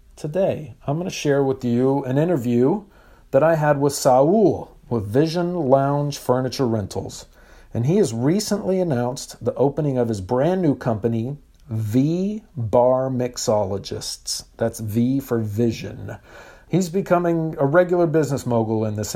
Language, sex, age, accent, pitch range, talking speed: English, male, 50-69, American, 115-160 Hz, 145 wpm